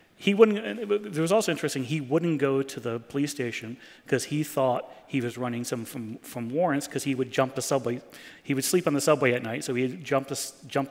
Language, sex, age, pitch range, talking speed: English, male, 30-49, 125-155 Hz, 225 wpm